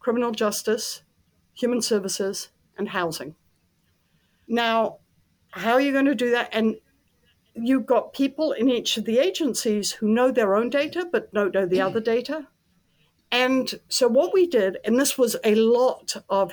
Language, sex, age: English, female, 60-79